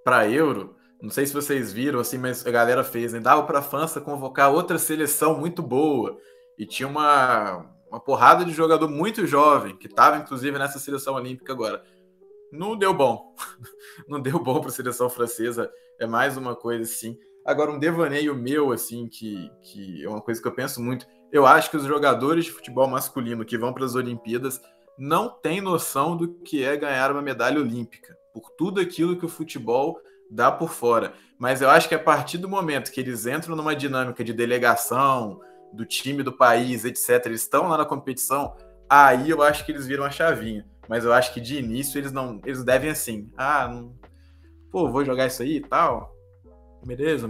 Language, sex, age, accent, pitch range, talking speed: Portuguese, male, 20-39, Brazilian, 120-165 Hz, 195 wpm